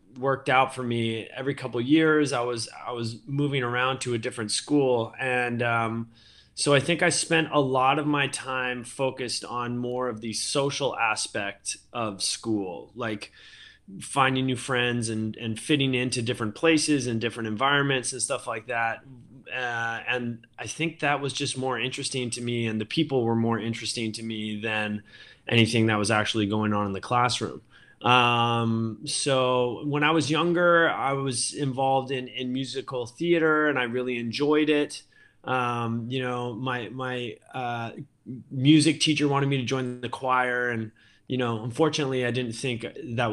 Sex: male